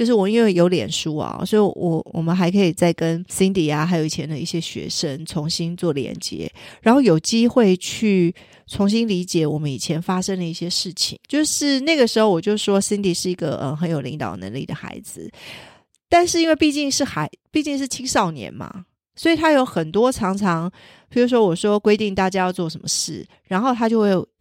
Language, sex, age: Chinese, female, 30-49